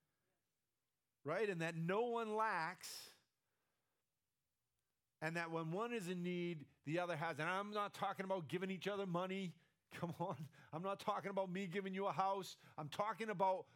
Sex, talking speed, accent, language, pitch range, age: male, 170 wpm, American, English, 145-195 Hz, 50-69